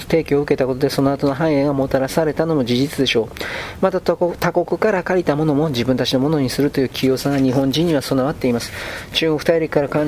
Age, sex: 40-59, male